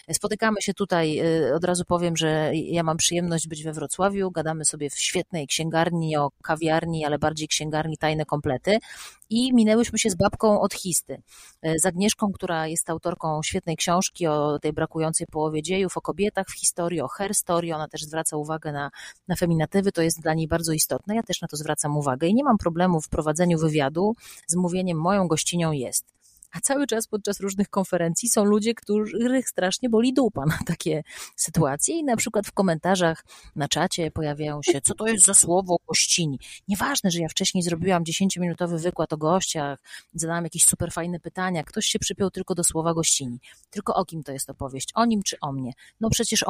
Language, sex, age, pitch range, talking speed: Polish, female, 30-49, 160-200 Hz, 185 wpm